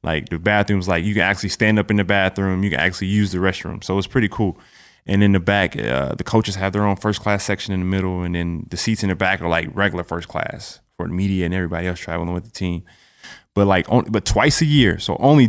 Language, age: English, 20-39